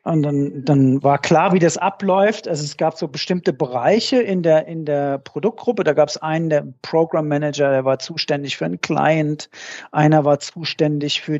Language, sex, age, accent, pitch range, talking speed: German, male, 40-59, German, 140-170 Hz, 190 wpm